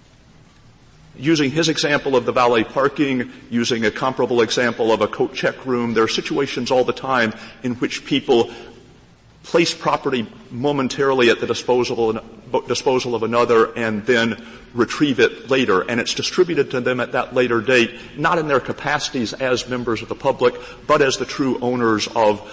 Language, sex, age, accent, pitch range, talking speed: English, male, 50-69, American, 115-140 Hz, 165 wpm